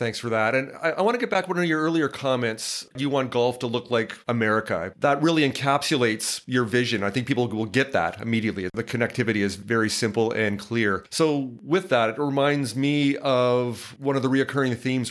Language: English